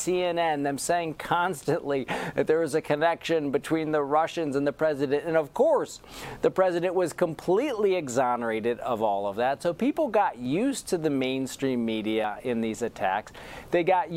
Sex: male